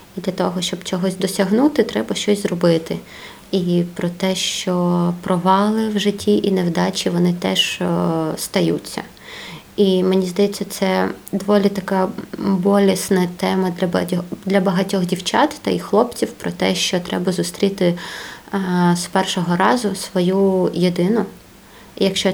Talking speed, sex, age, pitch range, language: 125 wpm, female, 20-39, 175-200 Hz, Ukrainian